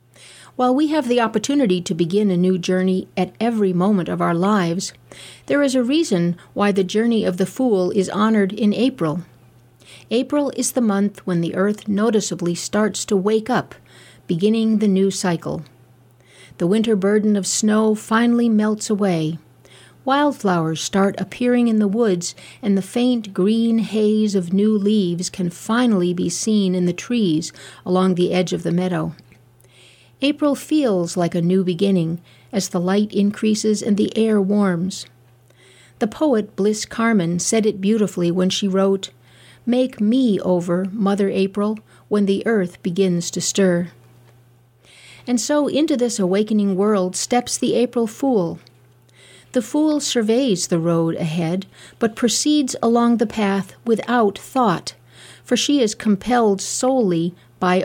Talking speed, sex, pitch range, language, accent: 150 wpm, female, 175-225 Hz, English, American